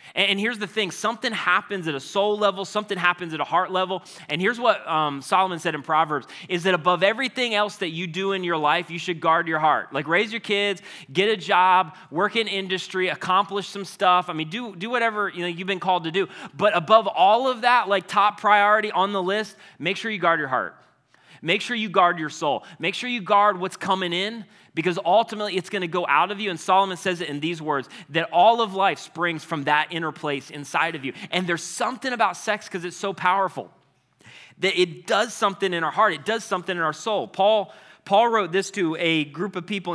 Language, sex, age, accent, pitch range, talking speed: English, male, 20-39, American, 160-205 Hz, 230 wpm